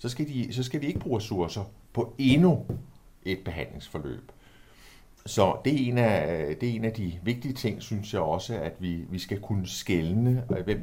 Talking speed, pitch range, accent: 175 wpm, 95-115 Hz, native